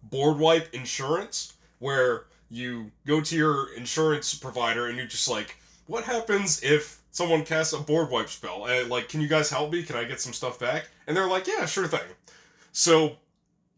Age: 20-39